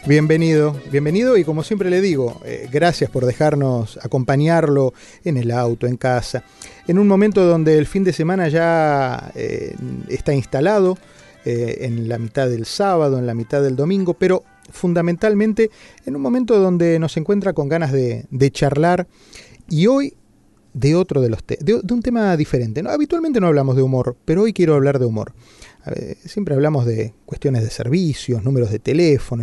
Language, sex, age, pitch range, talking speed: Spanish, male, 30-49, 125-170 Hz, 170 wpm